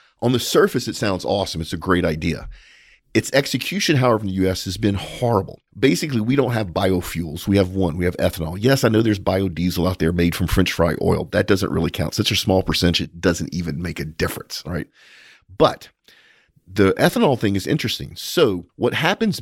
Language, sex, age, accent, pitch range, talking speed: English, male, 40-59, American, 90-115 Hz, 205 wpm